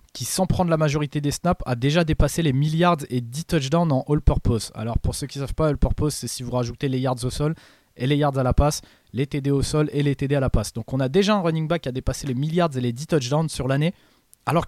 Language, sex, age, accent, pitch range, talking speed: French, male, 20-39, French, 130-165 Hz, 280 wpm